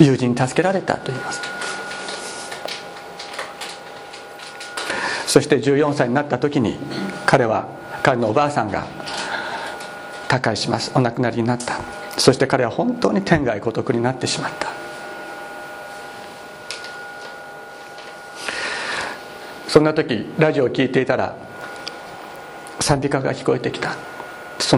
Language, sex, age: Japanese, male, 50-69